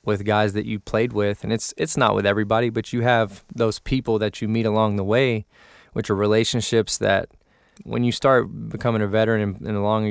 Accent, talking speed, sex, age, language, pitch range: American, 215 wpm, male, 20-39, English, 100-110 Hz